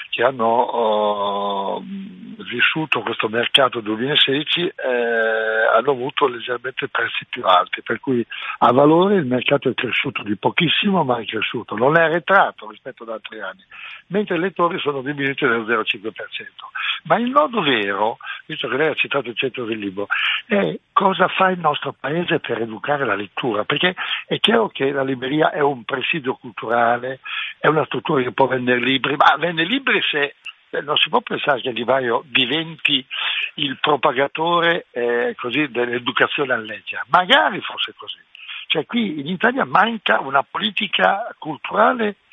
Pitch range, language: 125-170 Hz, Italian